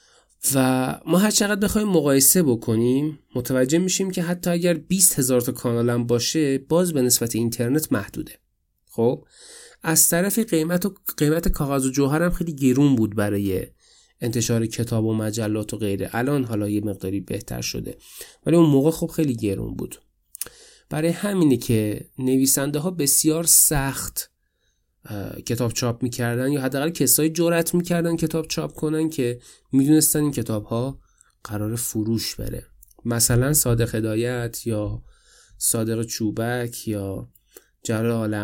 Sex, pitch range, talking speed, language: male, 115-160 Hz, 140 wpm, Persian